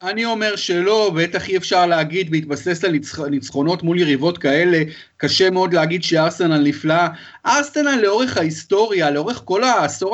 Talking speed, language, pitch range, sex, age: 140 wpm, Hebrew, 170-225 Hz, male, 30-49